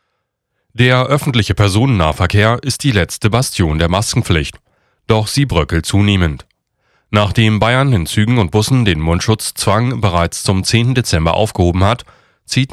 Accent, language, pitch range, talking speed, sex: German, German, 90-120 Hz, 130 wpm, male